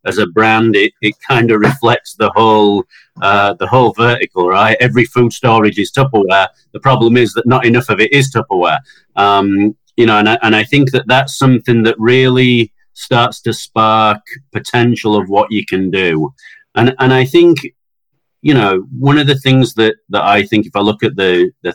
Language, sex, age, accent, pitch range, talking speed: English, male, 40-59, British, 100-130 Hz, 200 wpm